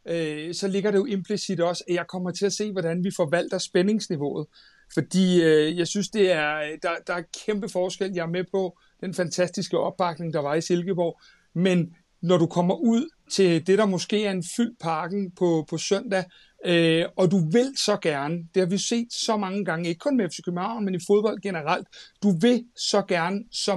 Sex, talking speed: male, 190 wpm